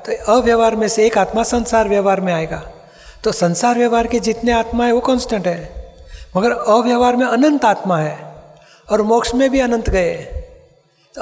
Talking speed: 170 wpm